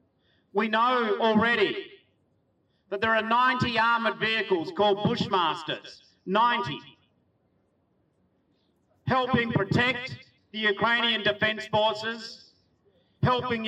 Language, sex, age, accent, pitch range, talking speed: Ukrainian, male, 50-69, Australian, 210-240 Hz, 85 wpm